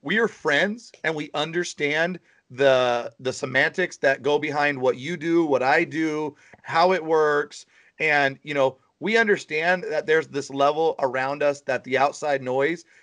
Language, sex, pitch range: English, male, 140-185 Hz